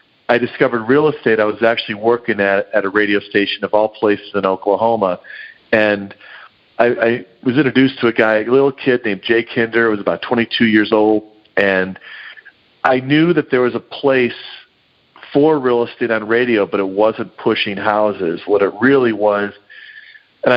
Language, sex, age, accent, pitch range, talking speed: English, male, 40-59, American, 100-130 Hz, 180 wpm